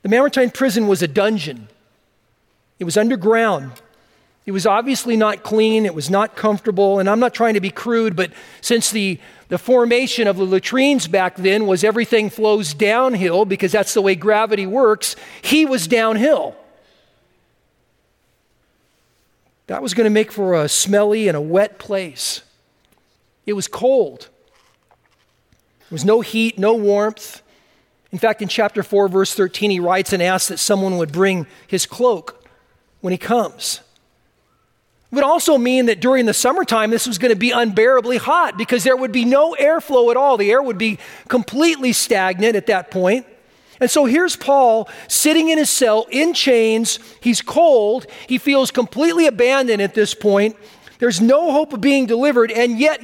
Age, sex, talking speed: 50-69, male, 165 wpm